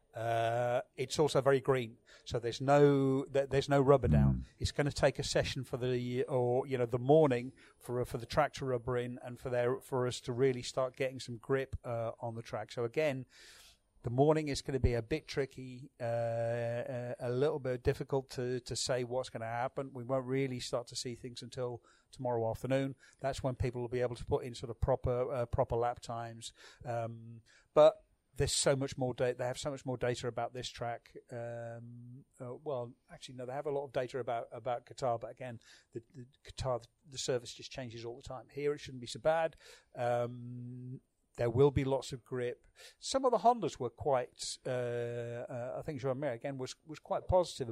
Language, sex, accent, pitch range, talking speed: English, male, British, 120-135 Hz, 210 wpm